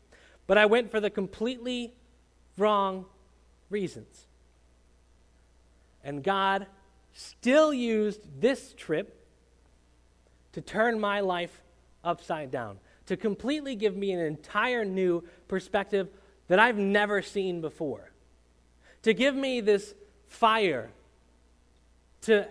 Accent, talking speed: American, 105 wpm